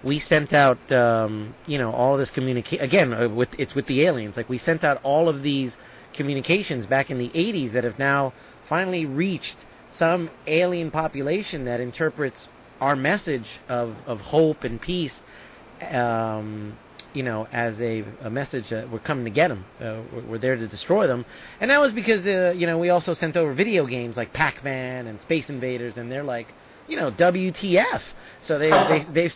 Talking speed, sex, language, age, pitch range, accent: 190 wpm, male, English, 30-49, 120-155 Hz, American